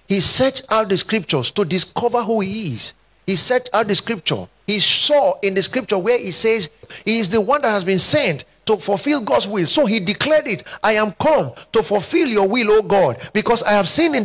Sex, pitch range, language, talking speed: male, 195-260 Hz, English, 225 wpm